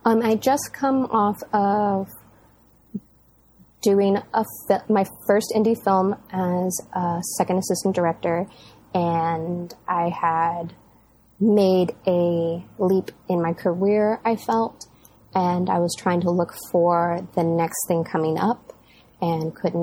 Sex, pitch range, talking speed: female, 160-185 Hz, 125 wpm